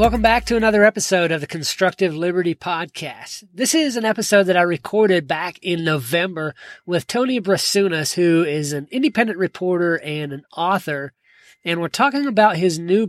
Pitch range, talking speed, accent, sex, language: 150-205 Hz, 170 wpm, American, male, English